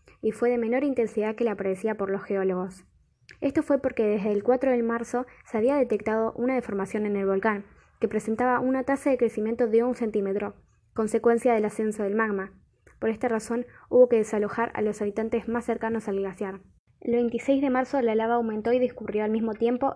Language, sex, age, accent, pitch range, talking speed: Spanish, female, 10-29, Argentinian, 210-245 Hz, 200 wpm